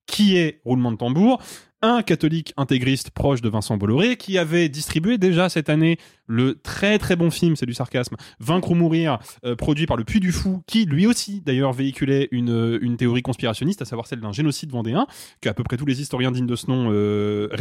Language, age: French, 20-39